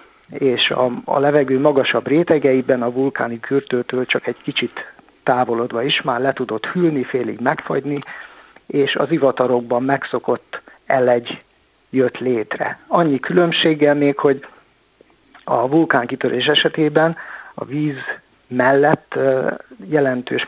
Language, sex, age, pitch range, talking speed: Hungarian, male, 50-69, 125-150 Hz, 115 wpm